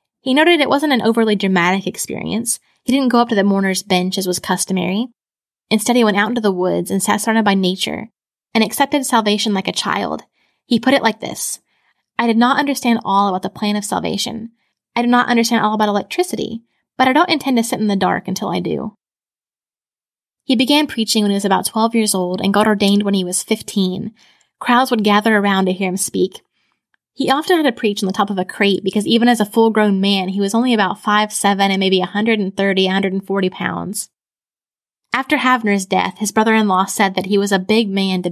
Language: English